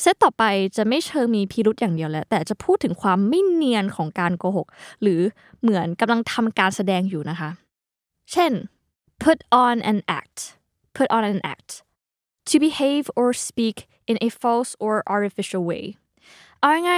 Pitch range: 190-270 Hz